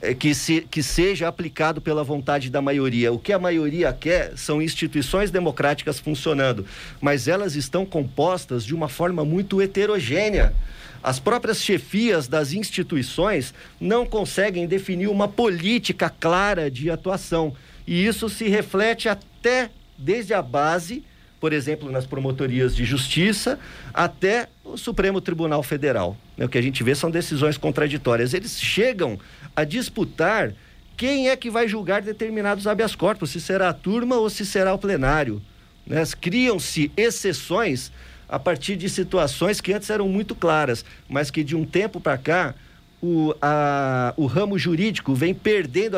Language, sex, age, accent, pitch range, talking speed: Portuguese, male, 50-69, Brazilian, 145-200 Hz, 145 wpm